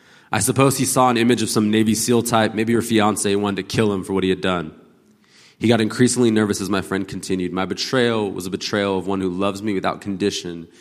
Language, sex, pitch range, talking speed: English, male, 90-110 Hz, 240 wpm